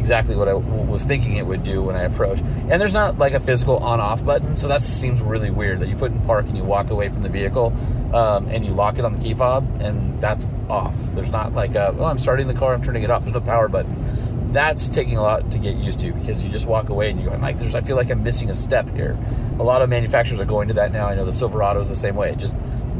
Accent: American